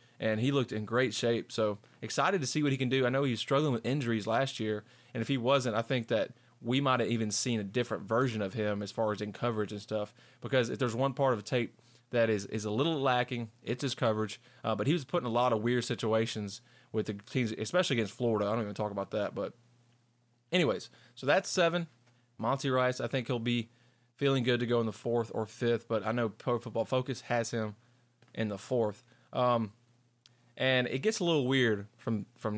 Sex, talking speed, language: male, 235 wpm, English